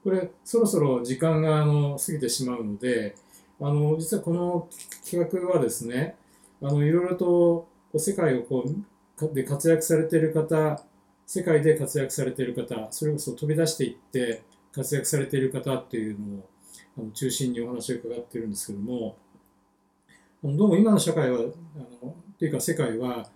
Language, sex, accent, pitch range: Japanese, male, native, 115-165 Hz